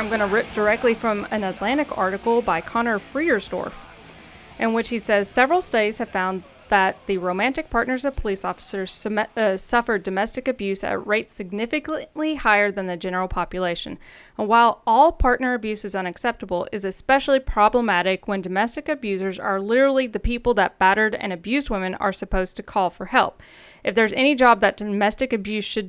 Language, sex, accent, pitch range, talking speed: English, female, American, 195-230 Hz, 175 wpm